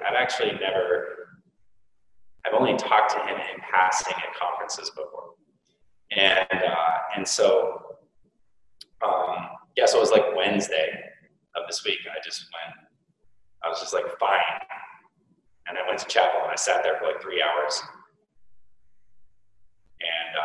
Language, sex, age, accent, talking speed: English, male, 30-49, American, 140 wpm